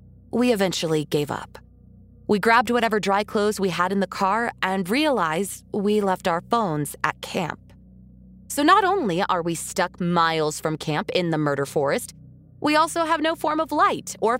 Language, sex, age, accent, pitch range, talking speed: English, female, 20-39, American, 155-235 Hz, 180 wpm